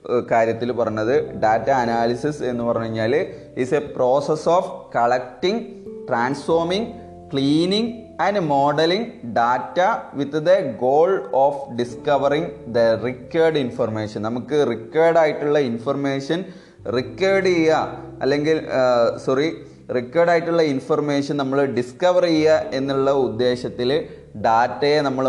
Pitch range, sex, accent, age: 125-155 Hz, male, native, 20-39